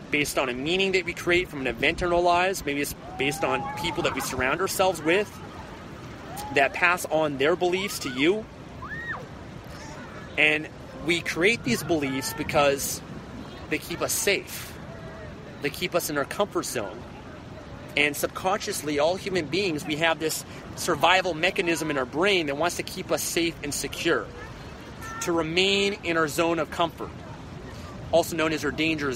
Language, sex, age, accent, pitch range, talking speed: English, male, 30-49, American, 140-175 Hz, 165 wpm